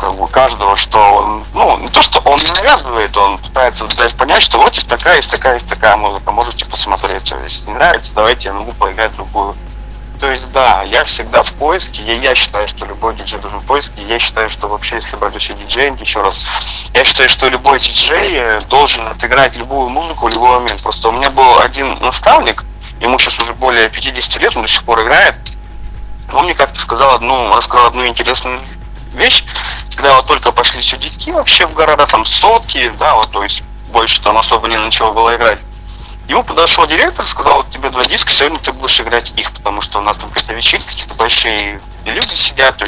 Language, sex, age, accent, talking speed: Russian, male, 30-49, native, 200 wpm